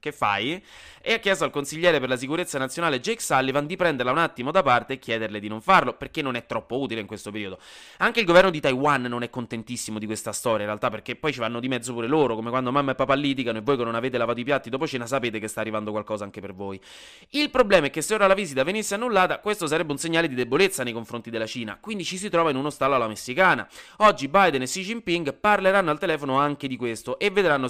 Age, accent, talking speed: 20-39, native, 255 wpm